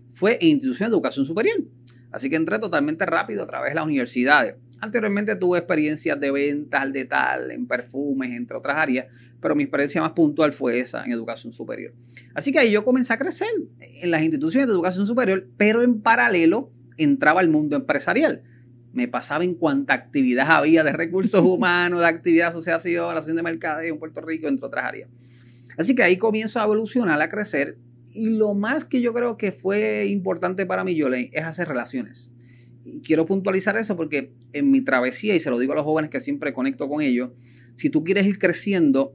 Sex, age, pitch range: male, 30-49, 130-195 Hz